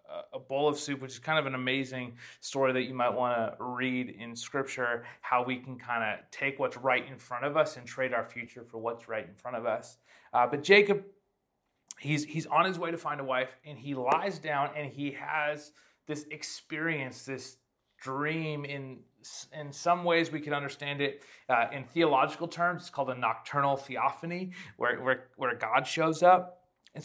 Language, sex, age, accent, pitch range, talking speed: English, male, 30-49, American, 140-175 Hz, 195 wpm